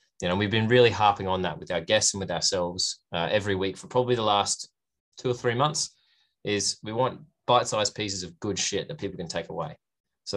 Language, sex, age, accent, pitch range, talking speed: English, male, 20-39, Australian, 95-110 Hz, 230 wpm